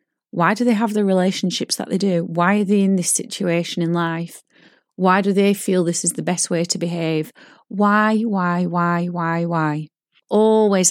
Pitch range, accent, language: 165-195 Hz, British, English